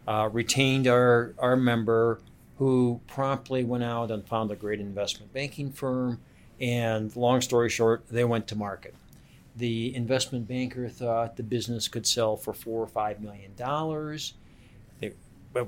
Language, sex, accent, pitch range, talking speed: English, male, American, 115-130 Hz, 145 wpm